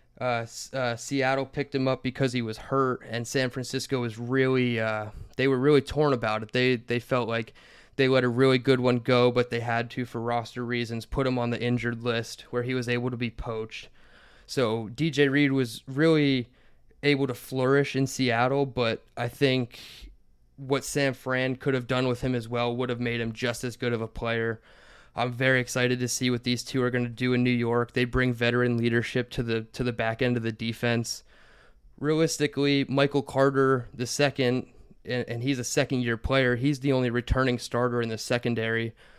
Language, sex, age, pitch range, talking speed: English, male, 20-39, 120-130 Hz, 200 wpm